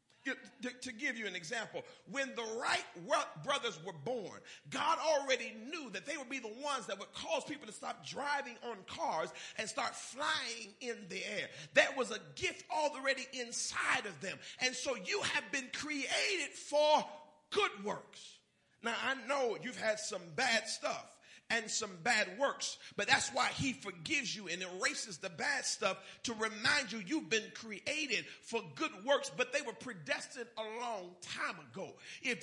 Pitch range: 220-290 Hz